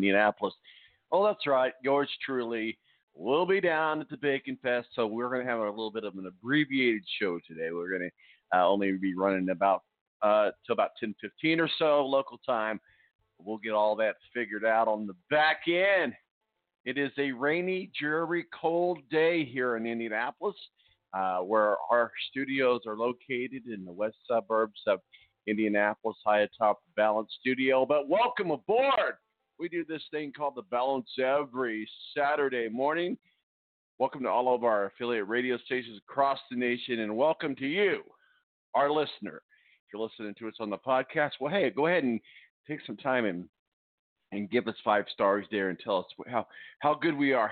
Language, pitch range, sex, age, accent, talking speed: English, 110-155 Hz, male, 50-69, American, 175 wpm